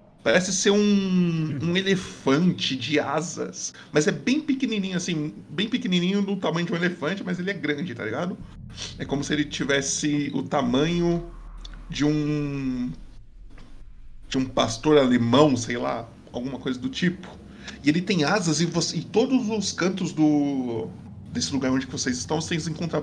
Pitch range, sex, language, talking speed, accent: 135-180 Hz, male, Portuguese, 160 wpm, Brazilian